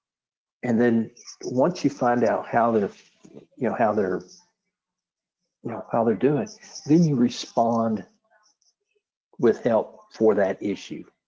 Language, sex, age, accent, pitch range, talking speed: English, male, 60-79, American, 115-150 Hz, 135 wpm